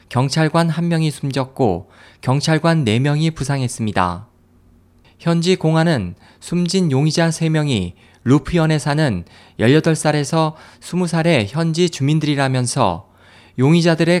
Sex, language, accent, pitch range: male, Korean, native, 105-160 Hz